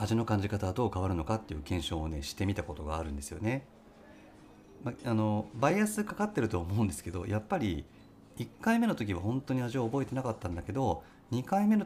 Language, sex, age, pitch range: Japanese, male, 40-59, 85-115 Hz